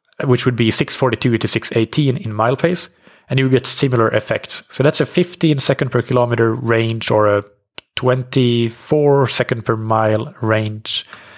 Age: 30-49